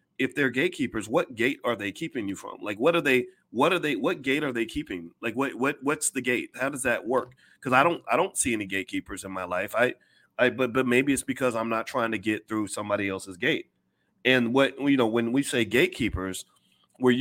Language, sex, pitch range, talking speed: English, male, 115-155 Hz, 235 wpm